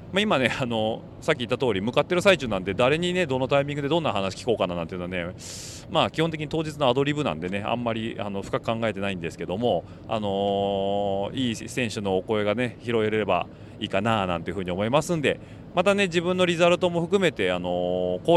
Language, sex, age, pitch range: Japanese, male, 30-49, 95-145 Hz